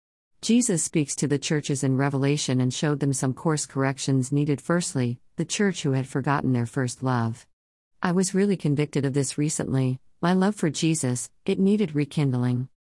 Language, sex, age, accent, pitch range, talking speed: English, female, 50-69, American, 130-165 Hz, 170 wpm